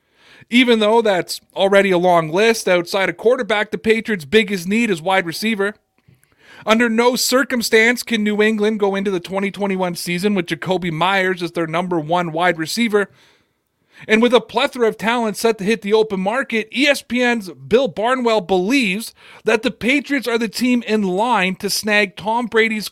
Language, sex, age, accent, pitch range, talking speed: English, male, 30-49, American, 185-230 Hz, 170 wpm